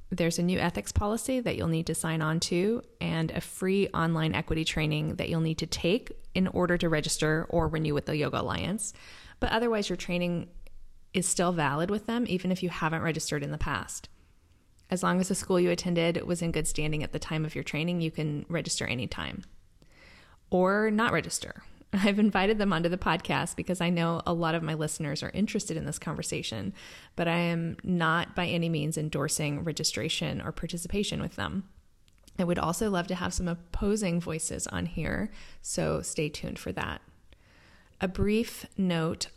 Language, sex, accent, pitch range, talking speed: English, female, American, 155-180 Hz, 190 wpm